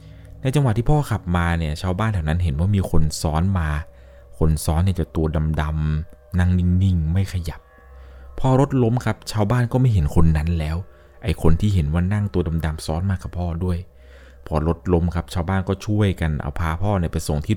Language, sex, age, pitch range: Thai, male, 20-39, 75-95 Hz